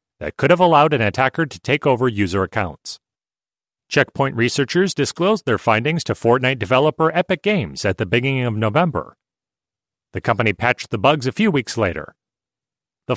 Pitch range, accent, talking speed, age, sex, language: 115-160 Hz, American, 165 wpm, 40-59, male, English